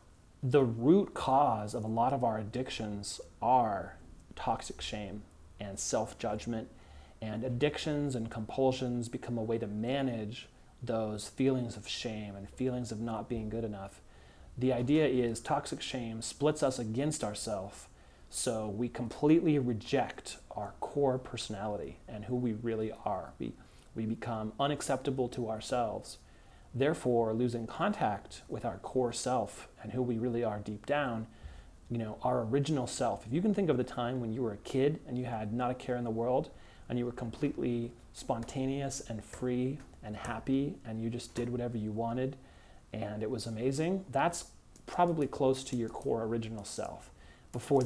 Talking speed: 165 wpm